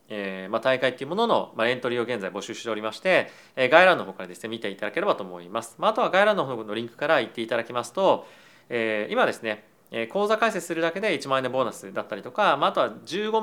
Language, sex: Japanese, male